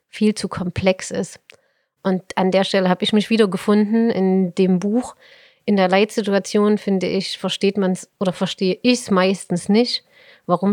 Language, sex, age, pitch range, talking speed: German, female, 30-49, 175-215 Hz, 160 wpm